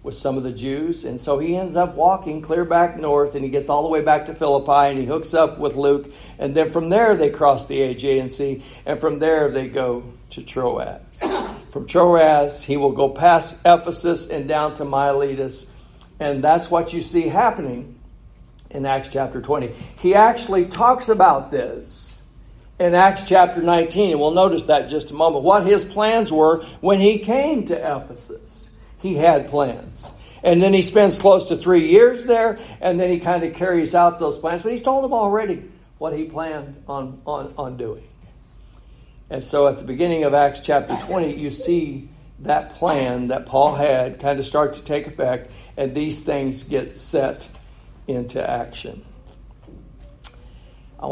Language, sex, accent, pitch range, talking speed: English, male, American, 140-175 Hz, 180 wpm